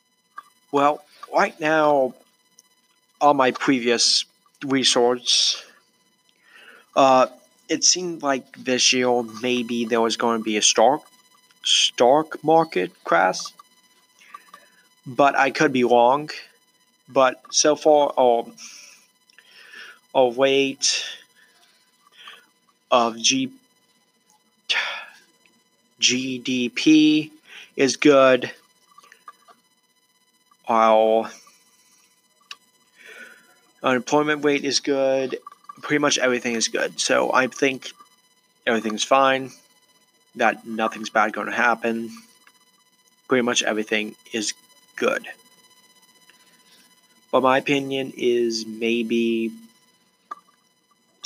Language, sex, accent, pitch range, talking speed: English, male, American, 120-155 Hz, 85 wpm